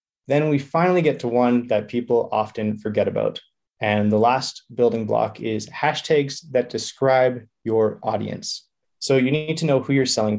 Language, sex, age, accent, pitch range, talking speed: English, male, 20-39, American, 105-130 Hz, 175 wpm